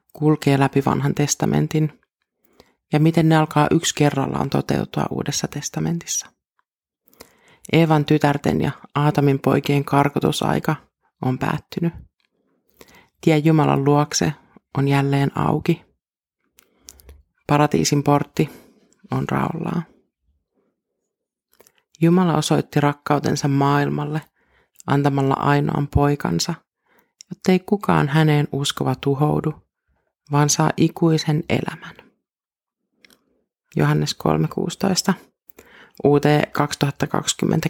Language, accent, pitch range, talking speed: Finnish, native, 140-165 Hz, 85 wpm